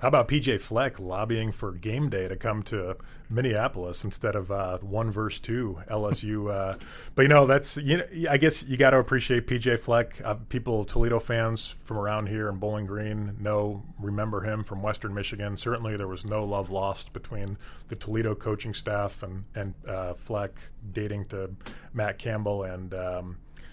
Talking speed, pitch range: 180 wpm, 100-125 Hz